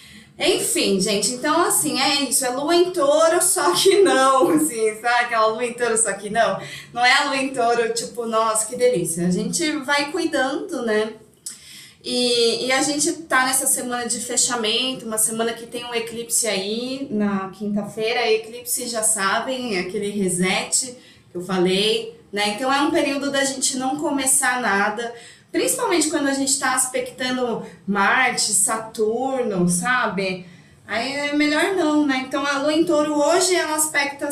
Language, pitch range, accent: Portuguese, 220-290 Hz, Brazilian